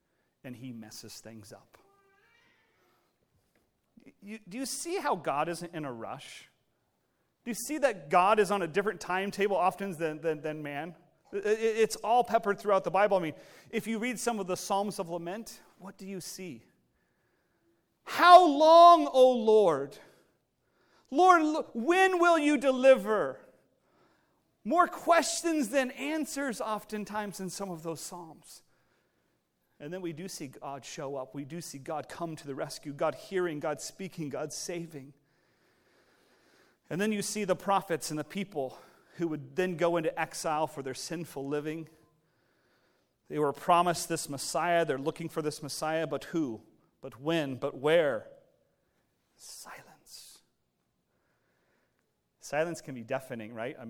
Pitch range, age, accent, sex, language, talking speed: 145-215 Hz, 40-59, American, male, English, 150 wpm